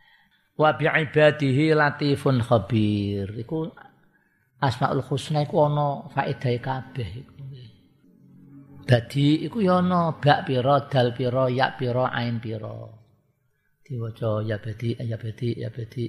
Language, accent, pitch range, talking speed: Indonesian, native, 115-145 Hz, 105 wpm